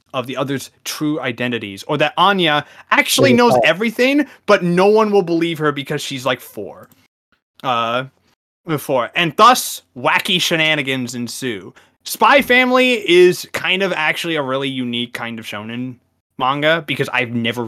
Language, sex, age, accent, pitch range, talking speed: English, male, 20-39, American, 120-175 Hz, 150 wpm